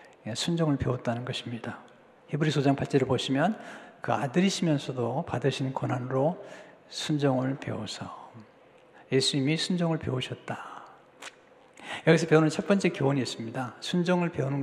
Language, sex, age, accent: Korean, male, 60-79, native